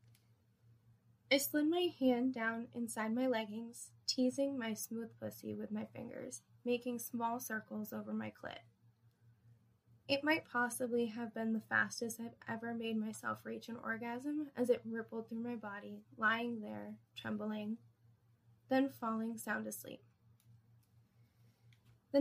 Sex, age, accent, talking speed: female, 20-39, American, 130 wpm